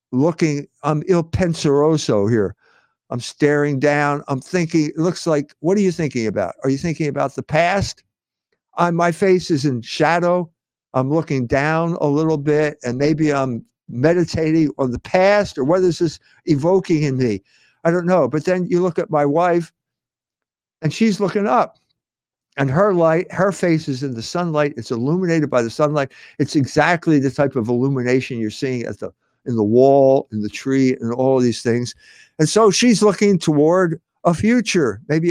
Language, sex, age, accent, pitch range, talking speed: English, male, 60-79, American, 140-185 Hz, 180 wpm